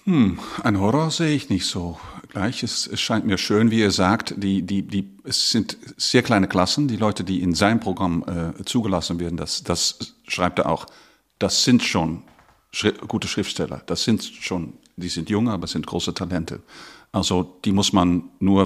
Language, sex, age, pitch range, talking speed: German, male, 50-69, 95-130 Hz, 190 wpm